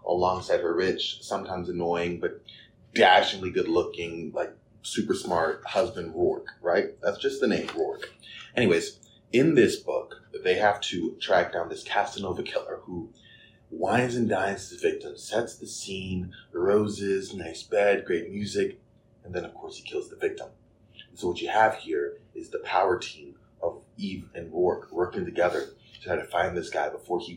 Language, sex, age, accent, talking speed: English, male, 30-49, American, 175 wpm